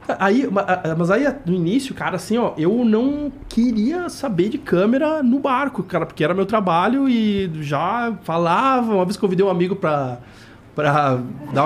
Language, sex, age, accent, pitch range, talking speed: Portuguese, male, 20-39, Brazilian, 140-225 Hz, 170 wpm